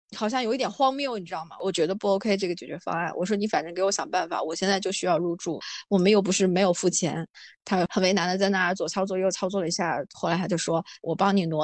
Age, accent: 20-39, native